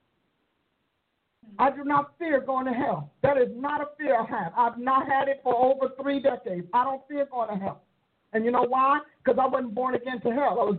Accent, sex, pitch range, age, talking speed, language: American, male, 195-265 Hz, 50-69, 230 wpm, English